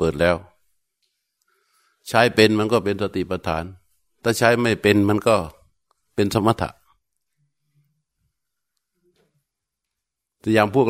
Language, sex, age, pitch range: Thai, male, 60-79, 90-110 Hz